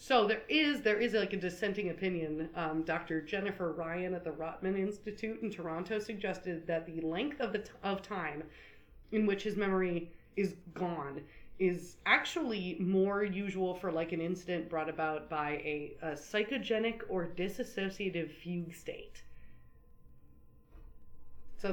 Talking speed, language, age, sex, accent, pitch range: 145 wpm, English, 30-49, female, American, 170-220 Hz